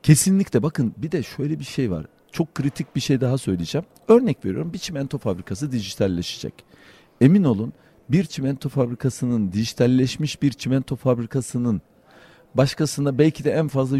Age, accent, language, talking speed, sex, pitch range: 50-69, native, Turkish, 145 wpm, male, 120-160 Hz